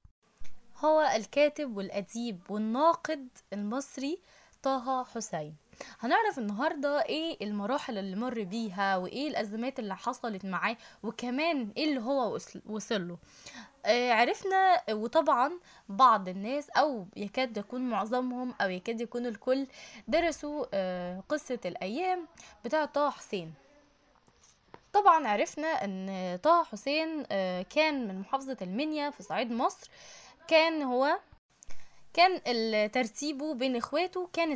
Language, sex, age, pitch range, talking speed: Arabic, female, 10-29, 215-305 Hz, 110 wpm